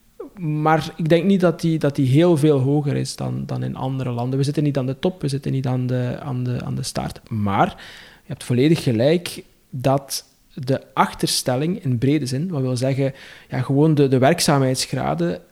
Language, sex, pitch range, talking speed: Dutch, male, 135-160 Hz, 200 wpm